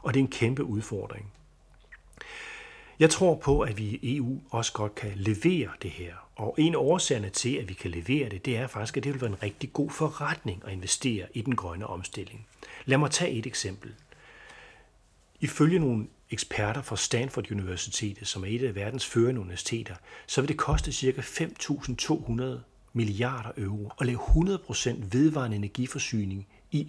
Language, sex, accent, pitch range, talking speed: Danish, male, native, 105-145 Hz, 175 wpm